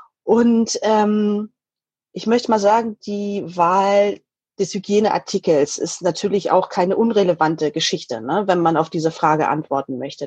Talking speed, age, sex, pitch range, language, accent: 135 wpm, 30-49, female, 170-210 Hz, German, German